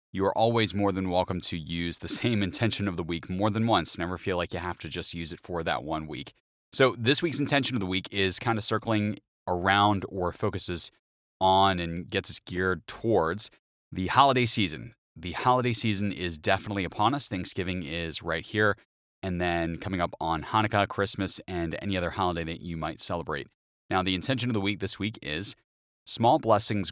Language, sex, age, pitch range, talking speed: English, male, 30-49, 90-110 Hz, 200 wpm